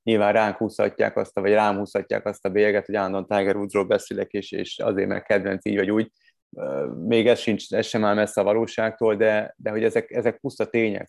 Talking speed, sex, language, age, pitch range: 220 wpm, male, Hungarian, 30-49, 105-115 Hz